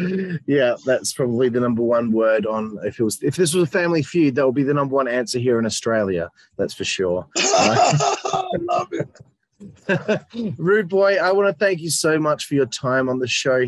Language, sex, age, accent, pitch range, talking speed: English, male, 20-39, Australian, 125-160 Hz, 215 wpm